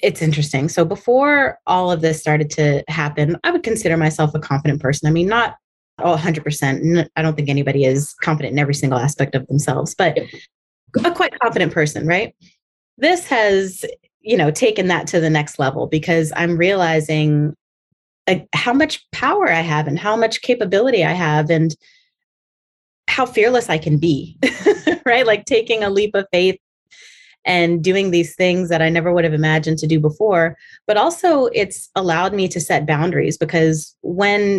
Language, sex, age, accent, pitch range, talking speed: English, female, 20-39, American, 155-210 Hz, 175 wpm